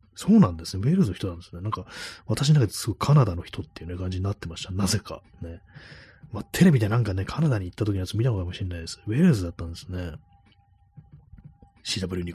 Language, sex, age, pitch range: Japanese, male, 30-49, 90-110 Hz